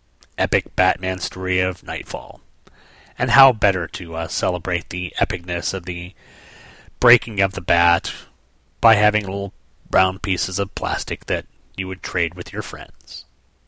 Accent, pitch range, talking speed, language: American, 90-115 Hz, 145 wpm, English